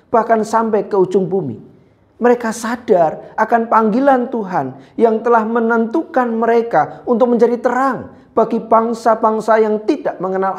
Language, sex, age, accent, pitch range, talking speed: Indonesian, male, 40-59, native, 155-235 Hz, 125 wpm